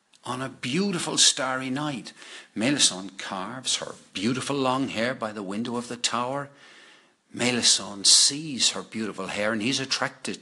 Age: 60-79